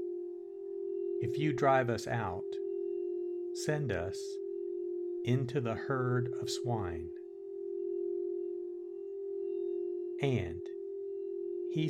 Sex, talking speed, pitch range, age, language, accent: male, 70 wpm, 360-385 Hz, 60-79, English, American